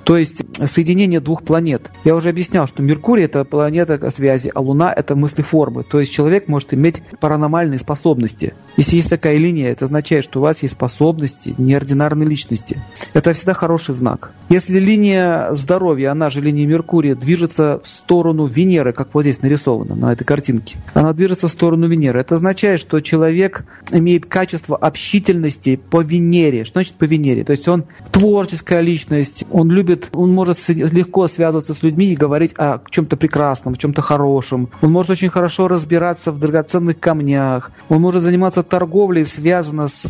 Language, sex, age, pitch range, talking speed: Russian, male, 40-59, 145-175 Hz, 170 wpm